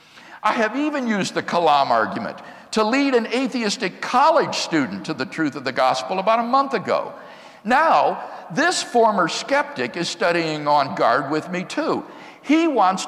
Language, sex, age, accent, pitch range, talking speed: English, male, 60-79, American, 185-255 Hz, 165 wpm